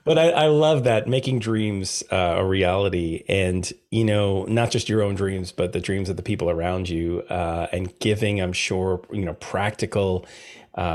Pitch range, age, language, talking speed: 90-115 Hz, 30-49, English, 190 wpm